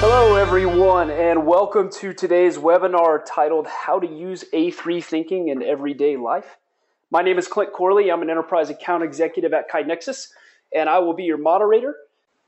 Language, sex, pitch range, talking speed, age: English, male, 150-185 Hz, 165 wpm, 30-49